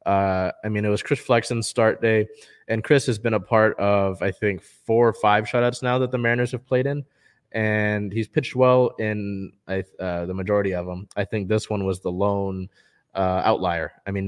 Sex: male